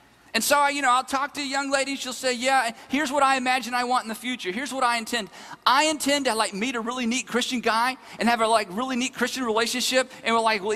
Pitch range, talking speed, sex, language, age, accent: 225-280 Hz, 275 wpm, male, English, 40-59, American